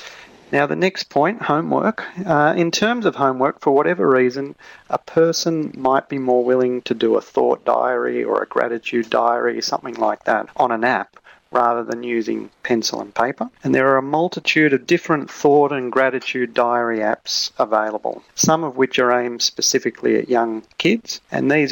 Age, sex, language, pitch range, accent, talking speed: 40-59, male, English, 120-150 Hz, Australian, 175 wpm